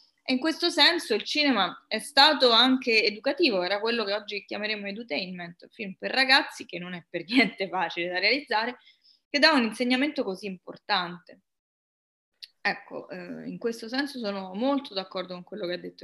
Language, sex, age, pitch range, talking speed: Italian, female, 20-39, 200-260 Hz, 170 wpm